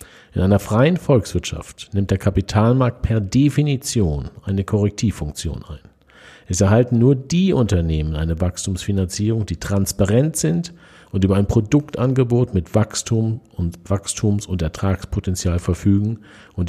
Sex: male